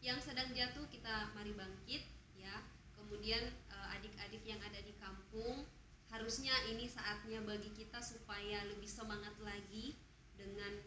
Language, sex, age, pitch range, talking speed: Indonesian, female, 20-39, 205-235 Hz, 135 wpm